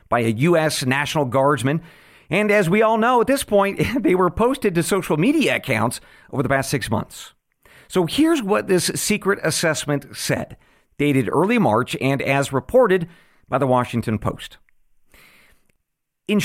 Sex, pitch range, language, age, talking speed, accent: male, 125-185 Hz, English, 50-69, 155 wpm, American